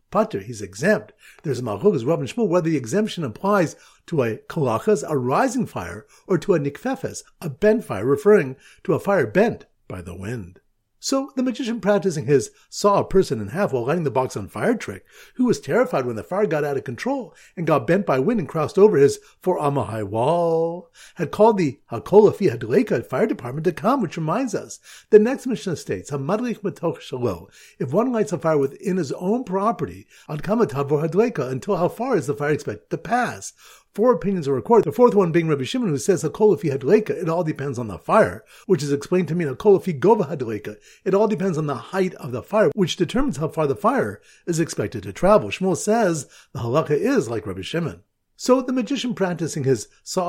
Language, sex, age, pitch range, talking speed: English, male, 50-69, 140-210 Hz, 195 wpm